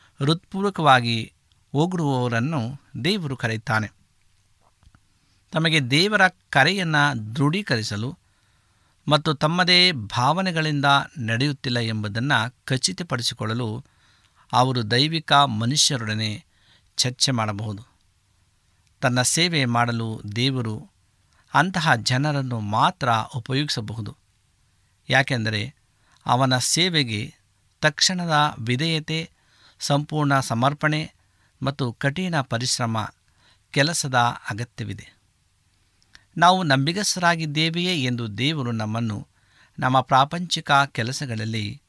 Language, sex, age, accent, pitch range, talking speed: Kannada, male, 50-69, native, 105-145 Hz, 65 wpm